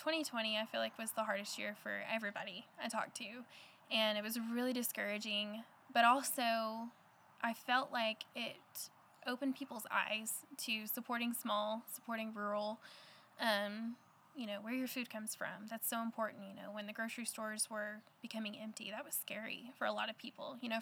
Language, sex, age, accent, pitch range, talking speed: English, female, 10-29, American, 215-245 Hz, 180 wpm